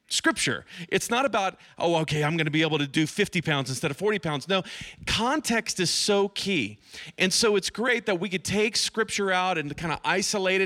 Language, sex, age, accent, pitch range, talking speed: English, male, 40-59, American, 145-195 Hz, 215 wpm